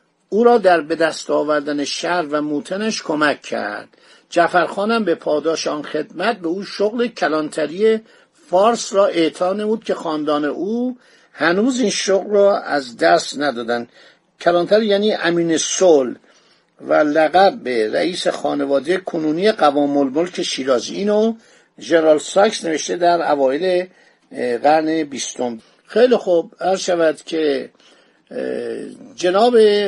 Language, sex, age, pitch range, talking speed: Persian, male, 50-69, 165-220 Hz, 125 wpm